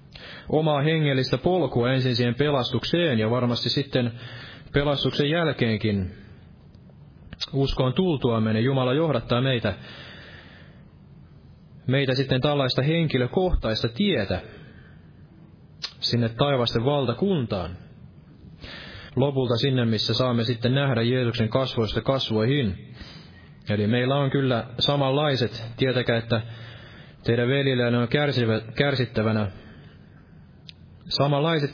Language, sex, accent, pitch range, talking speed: Finnish, male, native, 115-140 Hz, 90 wpm